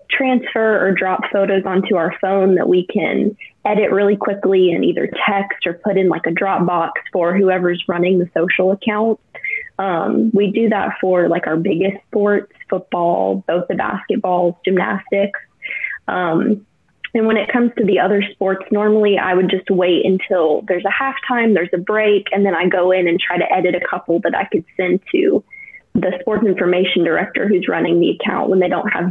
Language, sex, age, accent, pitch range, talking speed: English, female, 20-39, American, 180-215 Hz, 190 wpm